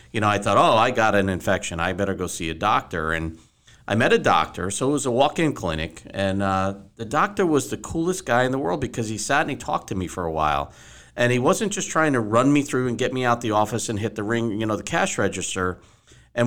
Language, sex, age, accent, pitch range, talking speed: English, male, 50-69, American, 100-135 Hz, 265 wpm